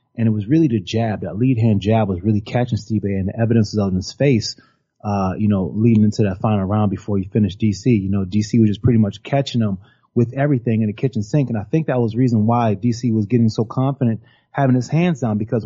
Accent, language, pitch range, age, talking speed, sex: American, English, 110-140 Hz, 30-49, 255 wpm, male